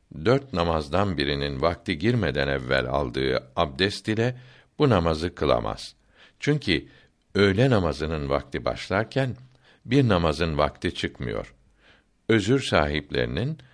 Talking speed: 100 wpm